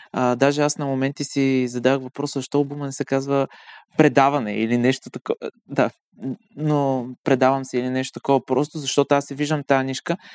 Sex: male